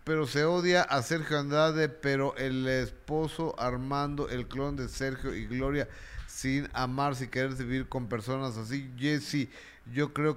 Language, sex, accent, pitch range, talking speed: Spanish, male, Mexican, 120-150 Hz, 170 wpm